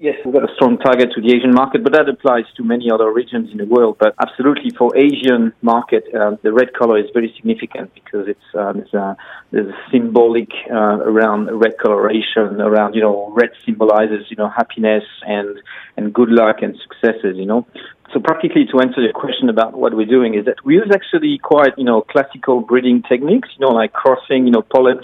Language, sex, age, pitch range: Korean, male, 40-59, 115-140 Hz